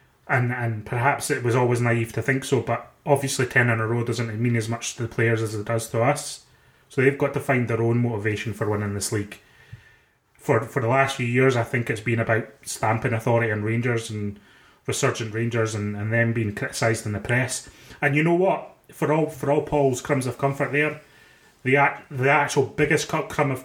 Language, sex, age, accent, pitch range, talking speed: English, male, 30-49, British, 115-135 Hz, 215 wpm